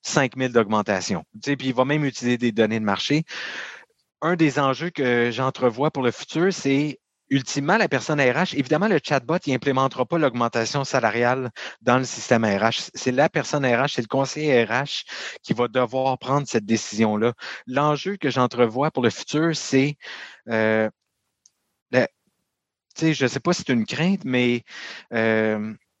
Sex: male